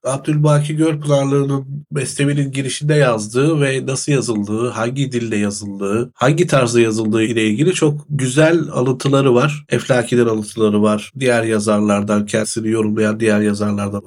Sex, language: male, Turkish